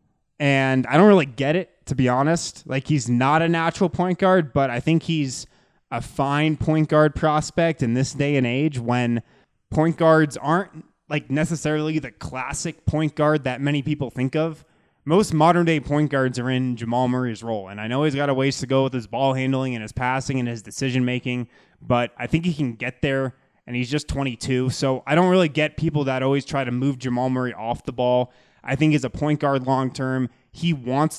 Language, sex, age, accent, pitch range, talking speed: English, male, 20-39, American, 125-150 Hz, 215 wpm